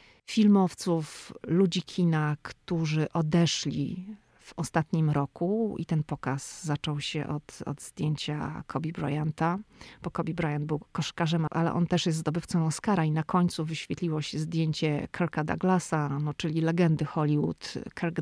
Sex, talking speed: female, 135 wpm